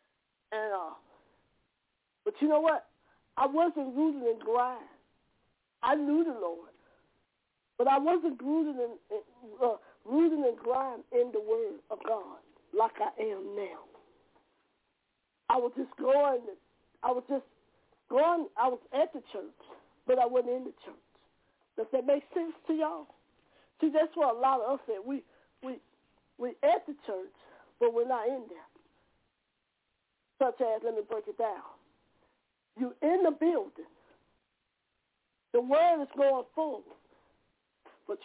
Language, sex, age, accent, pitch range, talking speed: English, female, 40-59, American, 250-345 Hz, 145 wpm